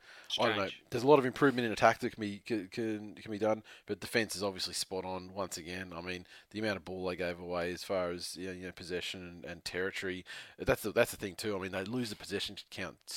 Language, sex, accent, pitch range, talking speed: English, male, Australian, 95-110 Hz, 275 wpm